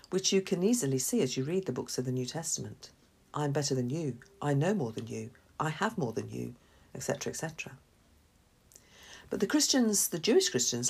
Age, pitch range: 50-69, 130-185 Hz